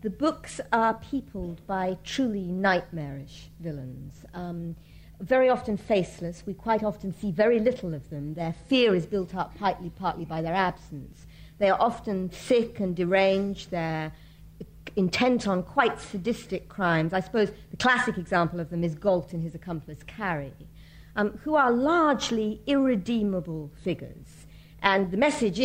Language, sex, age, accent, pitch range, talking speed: English, female, 50-69, British, 170-240 Hz, 150 wpm